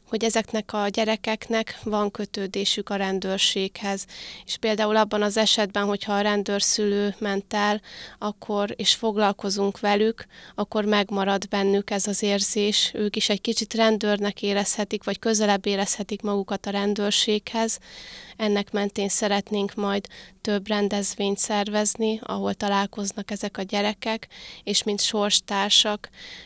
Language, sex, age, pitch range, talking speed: Hungarian, female, 20-39, 195-210 Hz, 125 wpm